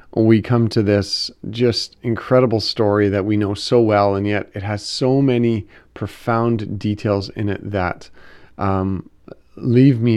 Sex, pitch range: male, 100-120 Hz